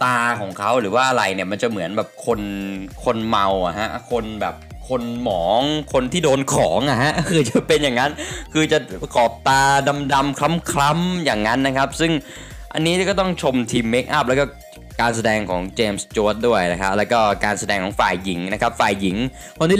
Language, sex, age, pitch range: Thai, male, 20-39, 100-145 Hz